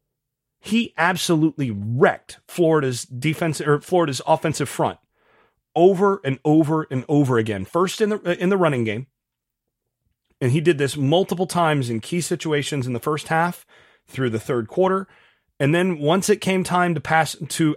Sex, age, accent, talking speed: male, 30-49, American, 160 wpm